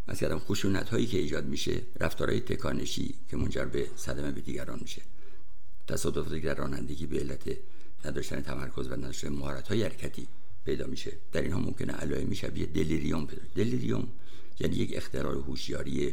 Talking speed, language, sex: 145 wpm, Persian, male